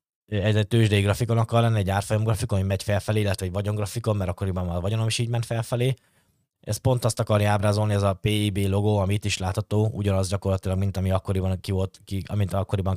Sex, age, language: male, 20-39, Hungarian